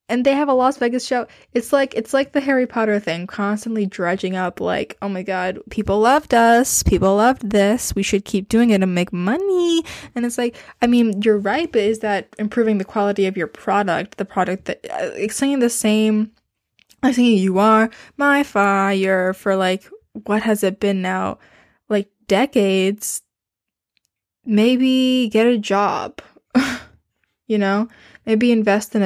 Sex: female